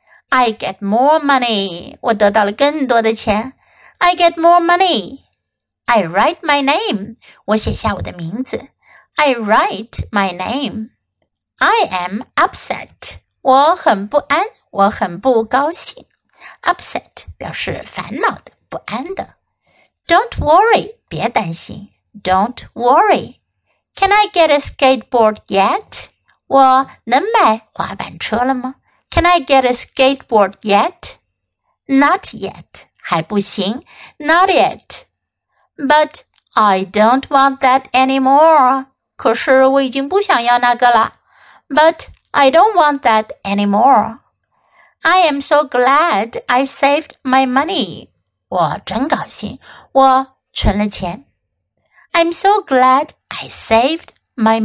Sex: female